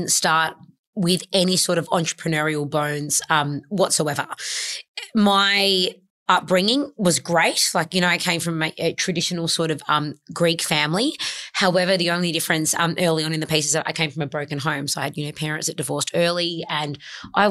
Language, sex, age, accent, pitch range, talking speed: English, female, 20-39, Australian, 155-185 Hz, 190 wpm